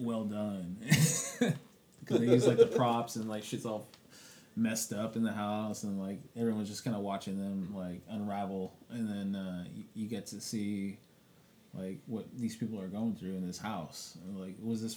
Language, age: English, 20-39